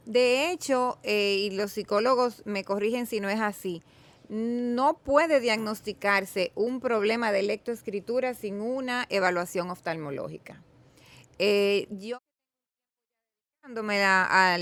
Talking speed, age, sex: 115 wpm, 30-49, female